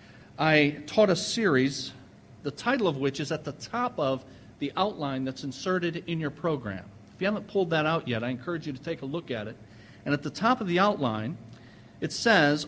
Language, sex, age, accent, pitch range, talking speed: English, male, 50-69, American, 140-195 Hz, 215 wpm